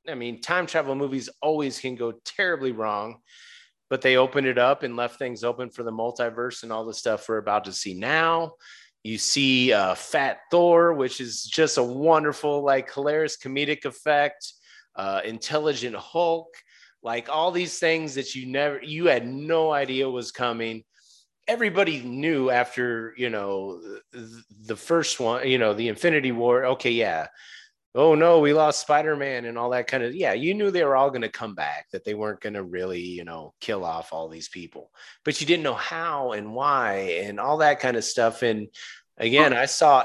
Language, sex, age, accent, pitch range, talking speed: English, male, 30-49, American, 115-150 Hz, 190 wpm